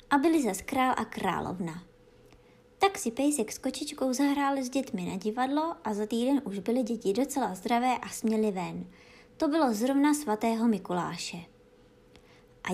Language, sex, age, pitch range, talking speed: Czech, male, 20-39, 210-290 Hz, 155 wpm